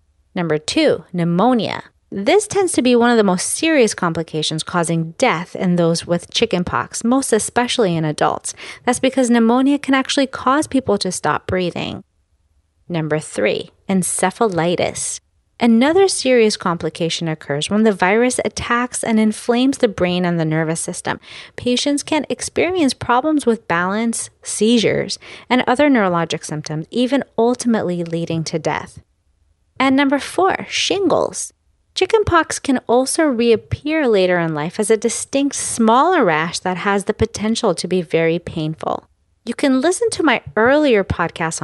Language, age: English, 30-49